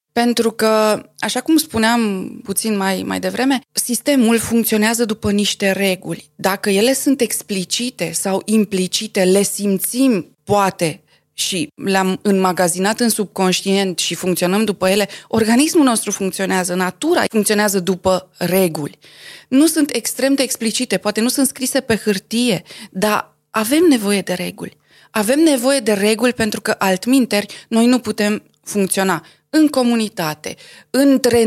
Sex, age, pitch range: female, 20-39, 190-250 Hz